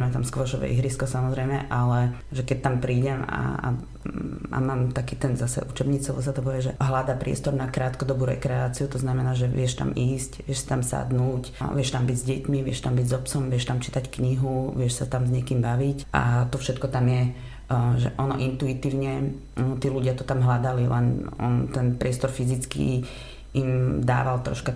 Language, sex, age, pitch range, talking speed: Slovak, female, 30-49, 120-130 Hz, 190 wpm